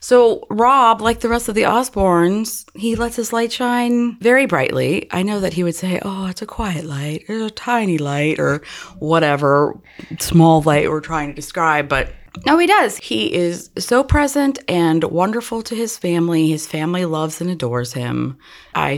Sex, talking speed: female, 185 wpm